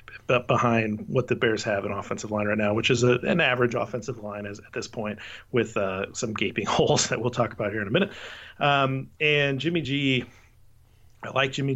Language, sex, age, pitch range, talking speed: English, male, 30-49, 110-125 Hz, 210 wpm